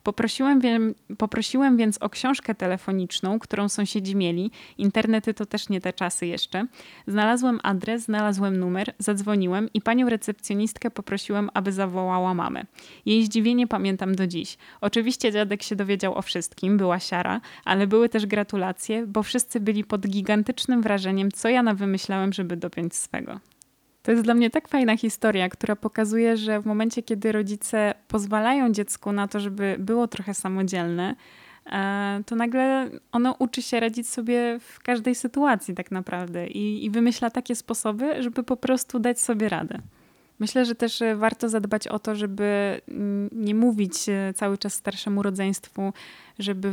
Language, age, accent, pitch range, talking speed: Polish, 20-39, native, 195-230 Hz, 155 wpm